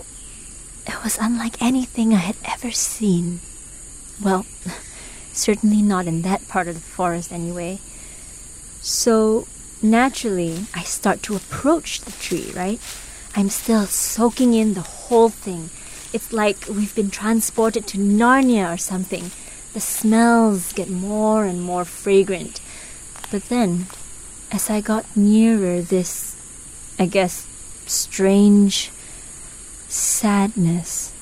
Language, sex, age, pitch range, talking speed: English, female, 30-49, 185-230 Hz, 115 wpm